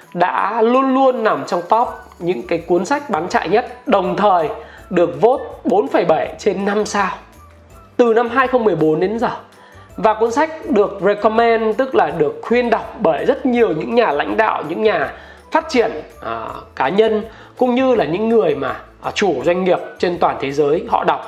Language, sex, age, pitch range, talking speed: Vietnamese, male, 20-39, 180-250 Hz, 185 wpm